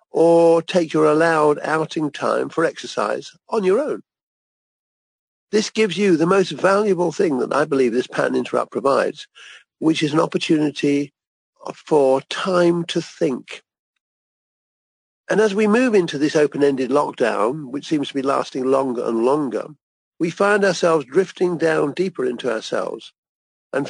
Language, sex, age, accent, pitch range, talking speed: English, male, 50-69, British, 140-195 Hz, 145 wpm